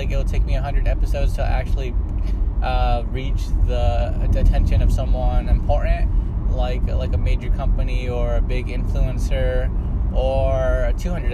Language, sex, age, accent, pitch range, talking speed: English, male, 20-39, American, 85-100 Hz, 125 wpm